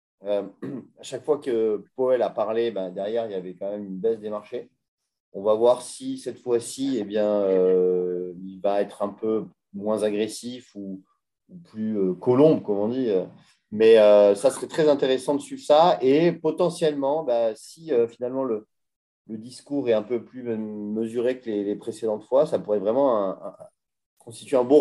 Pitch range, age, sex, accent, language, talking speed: 105-135 Hz, 30-49, male, French, French, 195 wpm